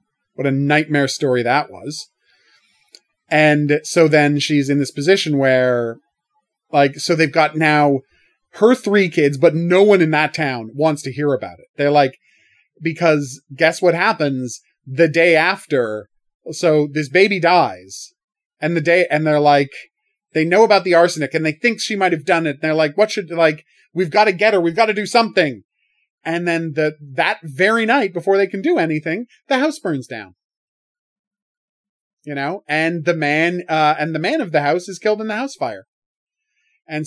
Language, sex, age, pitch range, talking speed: English, male, 30-49, 145-190 Hz, 185 wpm